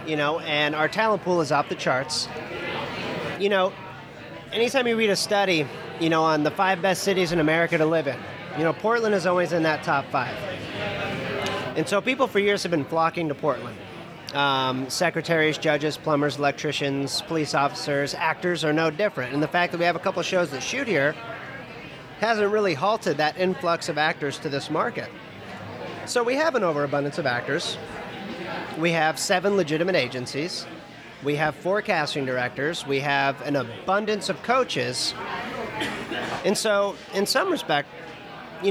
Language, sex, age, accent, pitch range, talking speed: English, male, 30-49, American, 145-190 Hz, 170 wpm